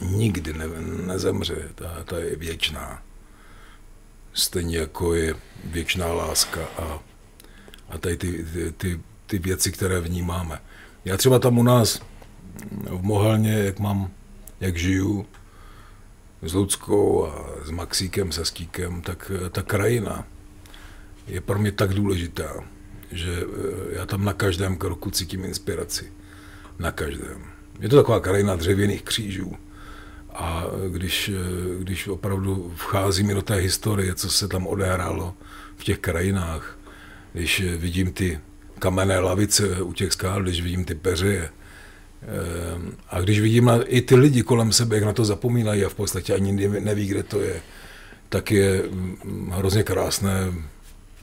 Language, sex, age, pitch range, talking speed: Czech, male, 50-69, 90-100 Hz, 135 wpm